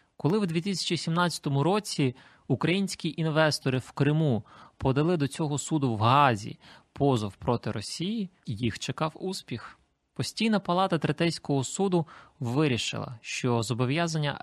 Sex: male